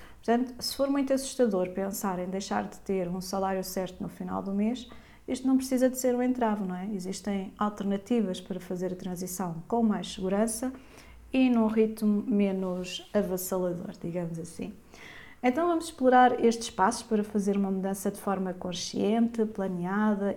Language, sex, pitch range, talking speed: Portuguese, female, 190-240 Hz, 160 wpm